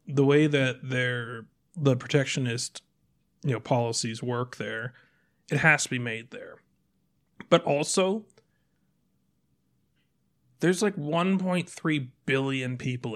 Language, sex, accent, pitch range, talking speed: English, male, American, 125-155 Hz, 120 wpm